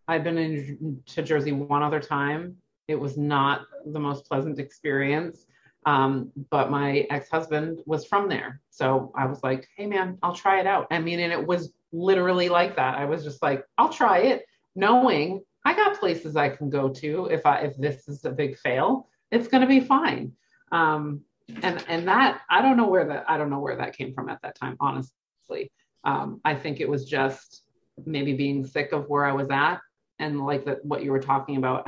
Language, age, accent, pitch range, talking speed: English, 30-49, American, 140-185 Hz, 205 wpm